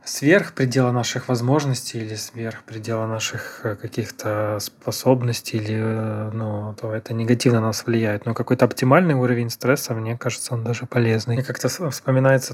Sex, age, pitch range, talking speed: male, 20-39, 120-130 Hz, 145 wpm